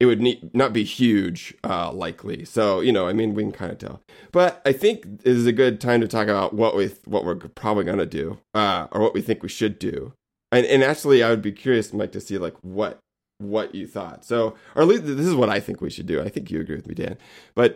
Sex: male